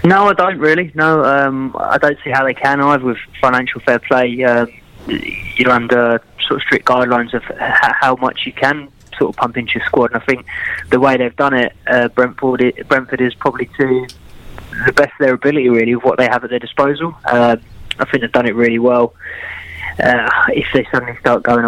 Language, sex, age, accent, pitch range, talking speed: English, male, 20-39, British, 115-130 Hz, 210 wpm